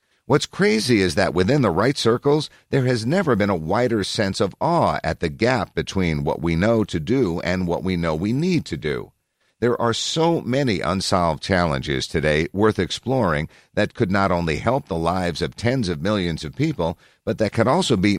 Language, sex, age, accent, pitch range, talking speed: English, male, 50-69, American, 85-125 Hz, 200 wpm